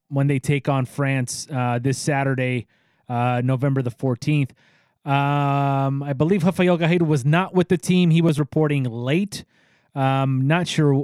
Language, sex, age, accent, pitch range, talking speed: English, male, 20-39, American, 135-170 Hz, 160 wpm